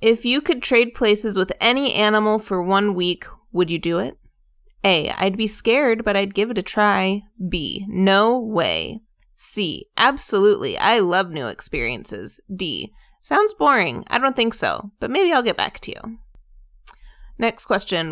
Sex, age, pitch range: female, 20-39, 185-225 Hz